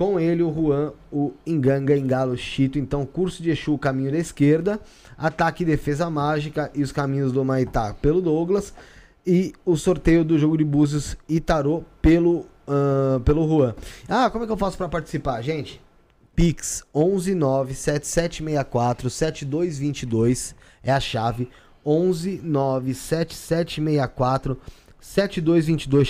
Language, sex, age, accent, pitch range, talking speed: Portuguese, male, 20-39, Brazilian, 135-165 Hz, 125 wpm